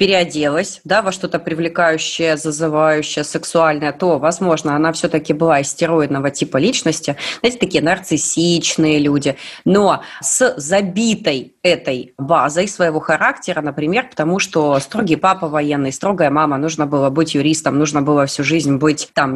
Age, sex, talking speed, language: 30-49, female, 140 wpm, Russian